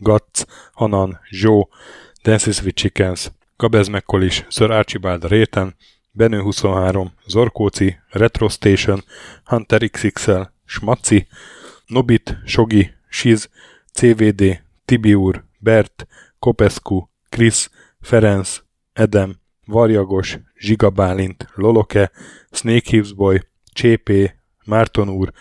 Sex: male